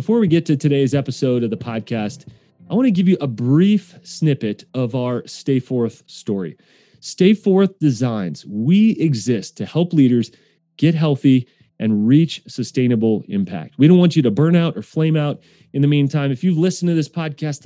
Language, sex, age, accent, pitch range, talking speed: English, male, 30-49, American, 125-160 Hz, 185 wpm